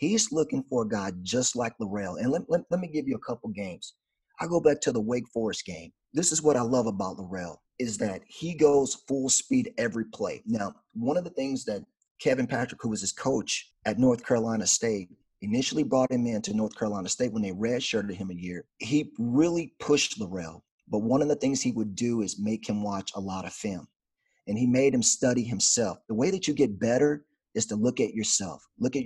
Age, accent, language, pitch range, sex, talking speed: 40-59, American, English, 105-145 Hz, male, 225 wpm